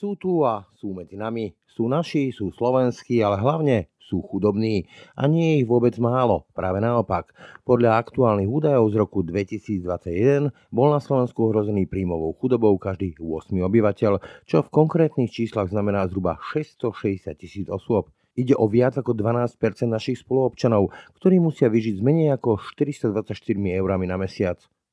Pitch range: 100-125 Hz